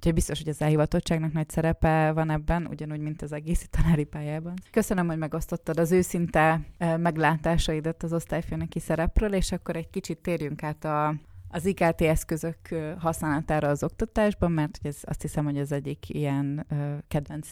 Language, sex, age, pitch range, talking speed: Hungarian, female, 20-39, 140-160 Hz, 160 wpm